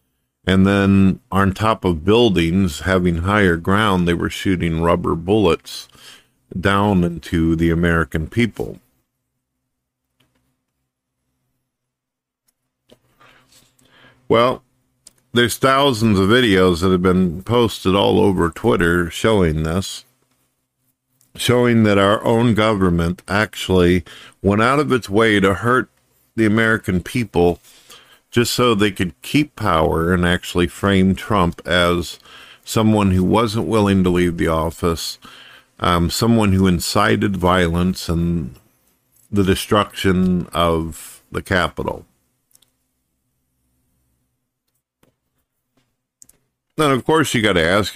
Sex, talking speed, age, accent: male, 110 wpm, 50-69, American